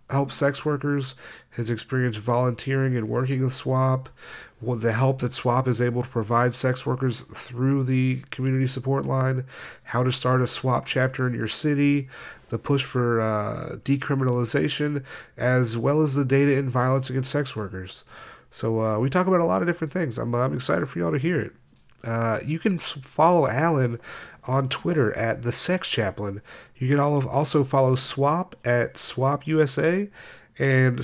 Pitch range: 125-145 Hz